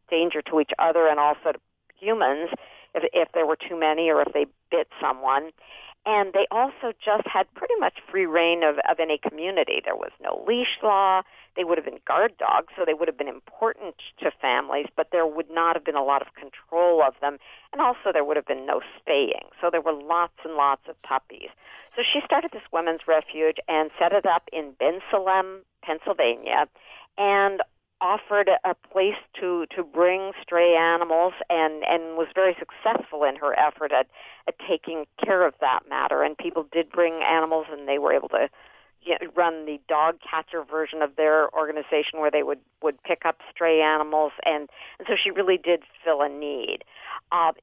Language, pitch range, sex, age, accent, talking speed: English, 155-195 Hz, female, 50-69, American, 190 wpm